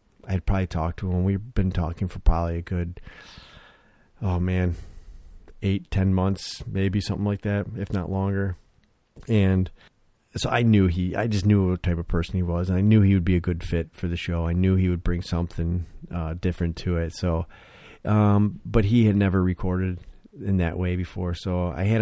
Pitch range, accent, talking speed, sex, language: 85-95 Hz, American, 200 wpm, male, English